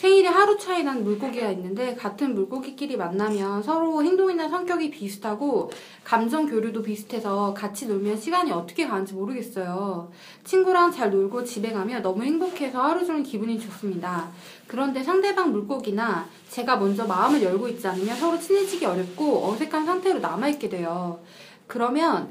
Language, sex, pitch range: Korean, female, 195-290 Hz